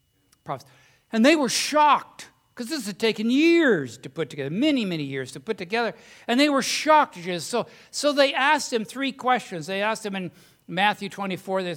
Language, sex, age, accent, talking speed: English, male, 60-79, American, 185 wpm